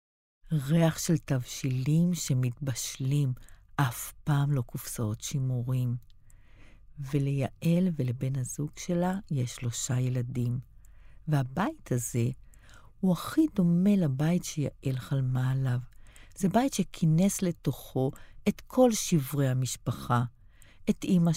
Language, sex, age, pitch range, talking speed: Hebrew, female, 50-69, 130-165 Hz, 100 wpm